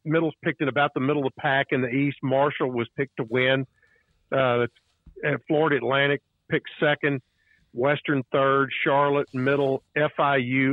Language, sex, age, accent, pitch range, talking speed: English, male, 50-69, American, 125-150 Hz, 150 wpm